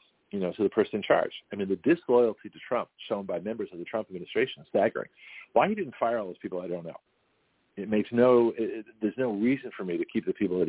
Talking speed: 270 wpm